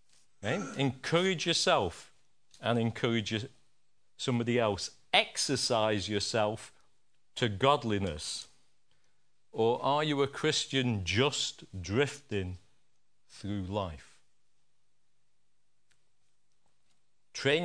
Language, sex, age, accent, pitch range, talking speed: English, male, 50-69, British, 110-145 Hz, 70 wpm